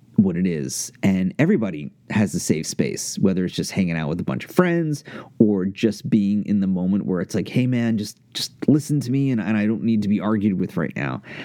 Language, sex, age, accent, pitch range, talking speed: English, male, 30-49, American, 100-140 Hz, 240 wpm